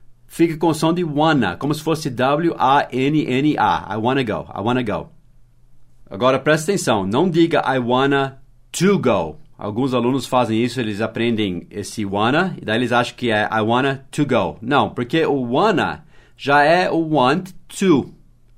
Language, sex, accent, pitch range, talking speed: English, male, Brazilian, 115-150 Hz, 170 wpm